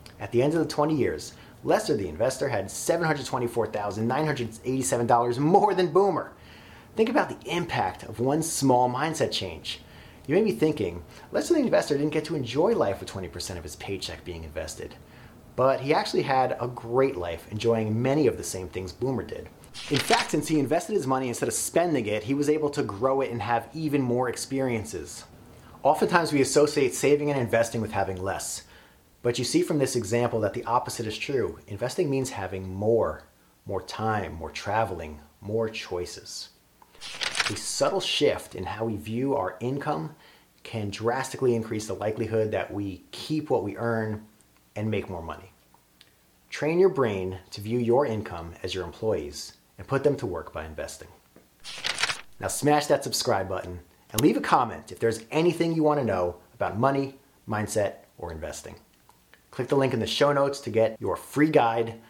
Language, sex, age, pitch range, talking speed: English, male, 30-49, 100-140 Hz, 175 wpm